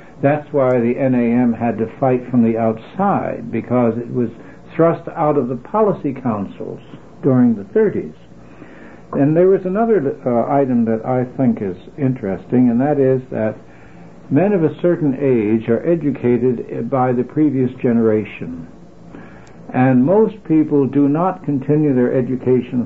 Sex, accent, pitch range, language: male, American, 125-150 Hz, English